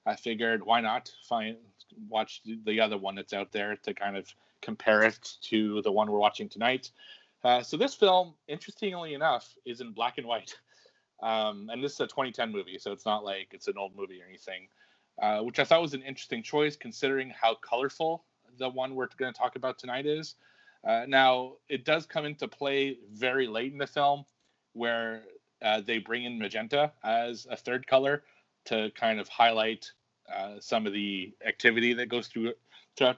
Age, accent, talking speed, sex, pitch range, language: 30-49, American, 190 wpm, male, 110-145 Hz, English